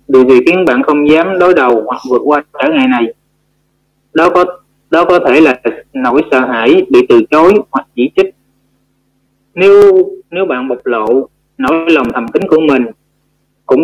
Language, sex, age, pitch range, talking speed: Vietnamese, male, 20-39, 135-170 Hz, 180 wpm